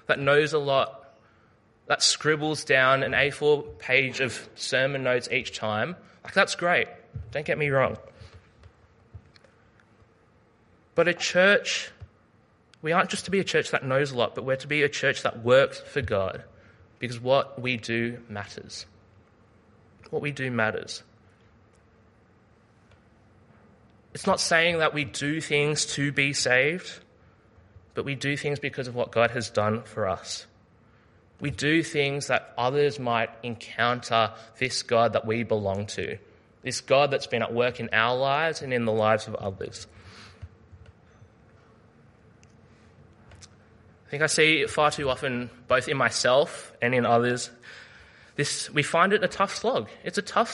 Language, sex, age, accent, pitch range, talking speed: English, male, 20-39, Australian, 110-140 Hz, 155 wpm